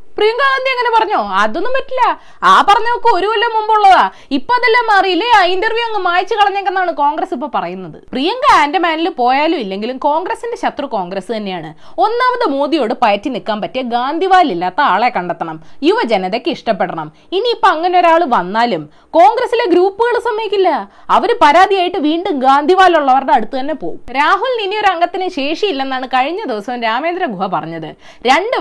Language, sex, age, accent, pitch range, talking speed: Malayalam, female, 20-39, native, 255-390 Hz, 135 wpm